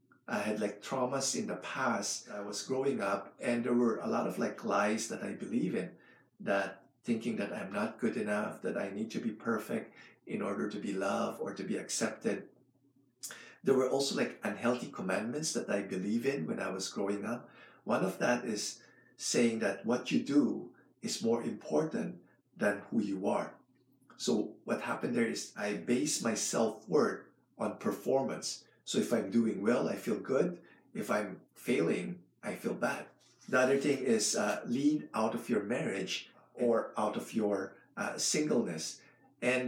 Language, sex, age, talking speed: English, male, 50-69, 180 wpm